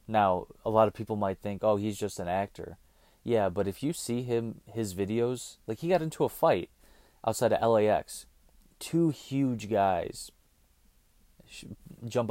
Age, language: 30-49, English